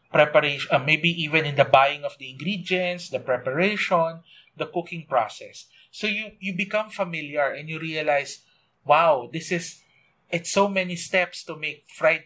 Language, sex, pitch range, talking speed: English, male, 145-190 Hz, 160 wpm